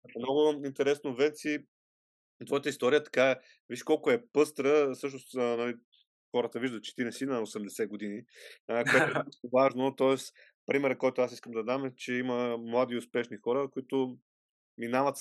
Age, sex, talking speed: 30-49, male, 160 wpm